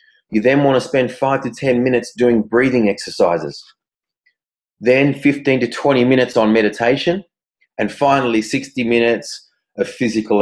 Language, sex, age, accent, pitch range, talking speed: English, male, 30-49, Australian, 110-140 Hz, 145 wpm